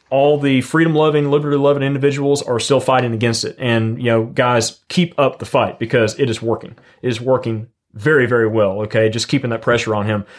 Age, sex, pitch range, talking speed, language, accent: 40-59, male, 125-165 Hz, 200 wpm, English, American